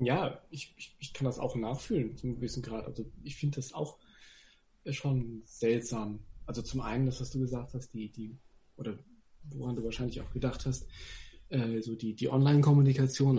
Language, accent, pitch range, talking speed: German, German, 120-150 Hz, 180 wpm